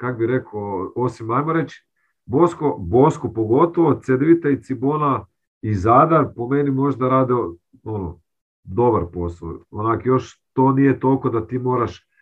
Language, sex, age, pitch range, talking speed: Croatian, male, 40-59, 100-135 Hz, 140 wpm